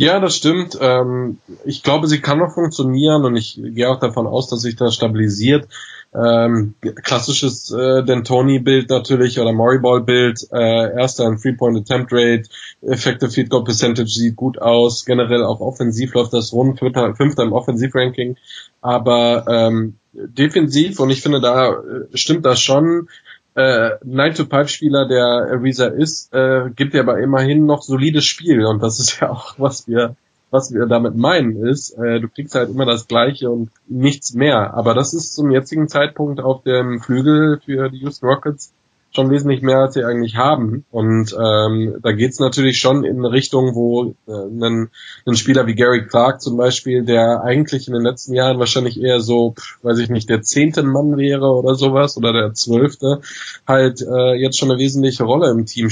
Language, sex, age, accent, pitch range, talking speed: German, male, 20-39, German, 120-135 Hz, 175 wpm